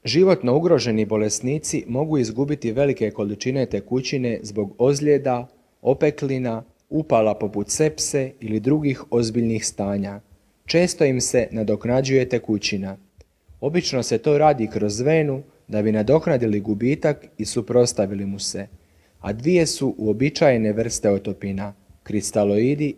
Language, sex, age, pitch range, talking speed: Croatian, male, 40-59, 105-135 Hz, 115 wpm